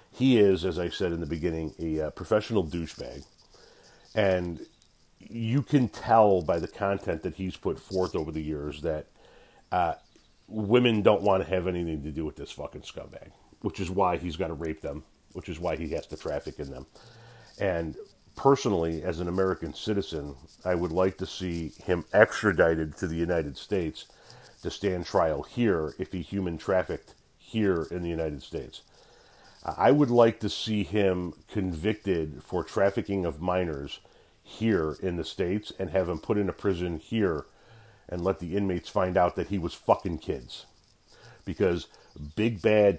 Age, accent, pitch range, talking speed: 40-59, American, 85-105 Hz, 175 wpm